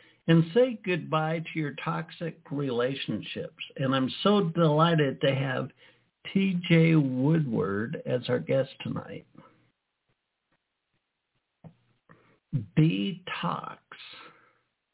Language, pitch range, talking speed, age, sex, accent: English, 140-180 Hz, 80 wpm, 60-79, male, American